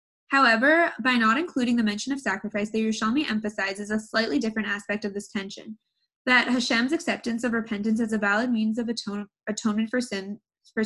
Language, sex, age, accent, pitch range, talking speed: English, female, 10-29, American, 215-250 Hz, 170 wpm